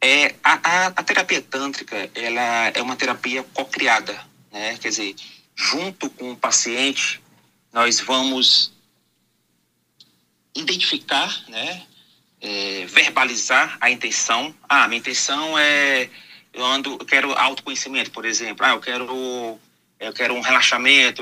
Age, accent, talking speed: 30-49, Brazilian, 125 wpm